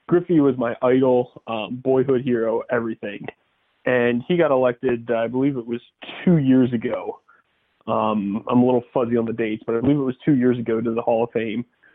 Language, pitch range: English, 120-145 Hz